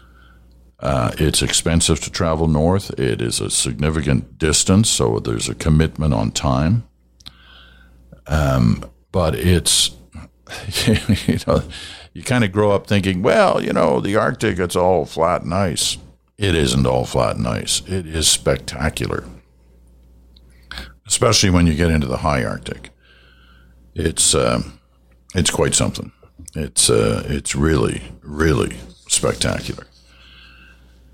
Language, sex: English, male